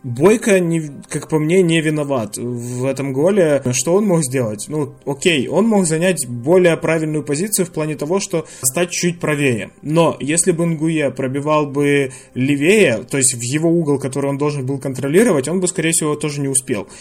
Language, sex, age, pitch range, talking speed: Ukrainian, male, 20-39, 140-170 Hz, 185 wpm